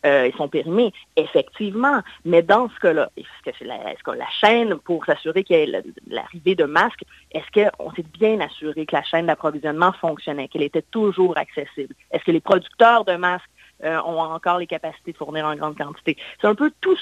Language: French